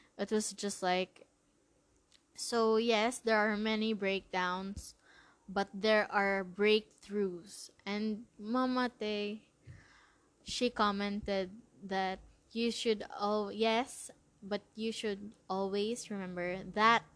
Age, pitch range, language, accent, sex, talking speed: 20-39, 180-220 Hz, English, Filipino, female, 100 wpm